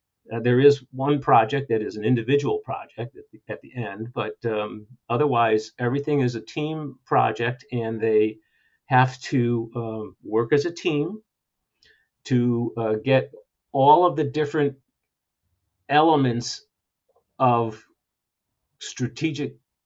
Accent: American